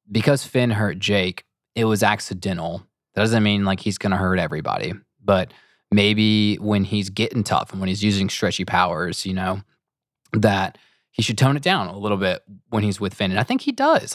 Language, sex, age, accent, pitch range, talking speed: English, male, 20-39, American, 95-115 Hz, 205 wpm